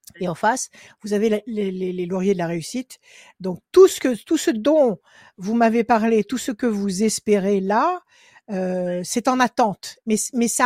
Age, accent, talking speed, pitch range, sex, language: 60-79, French, 205 wpm, 195-245 Hz, female, French